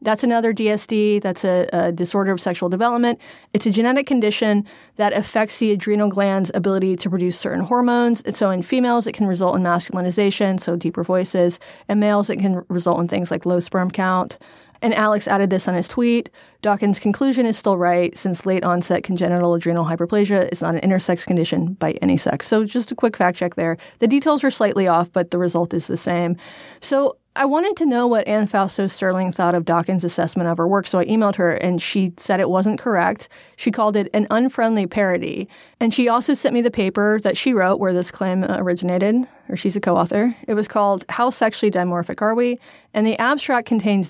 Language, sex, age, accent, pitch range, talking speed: English, female, 30-49, American, 180-230 Hz, 205 wpm